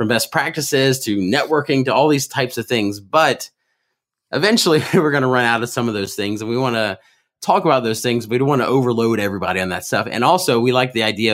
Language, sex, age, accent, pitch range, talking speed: English, male, 30-49, American, 100-125 Hz, 250 wpm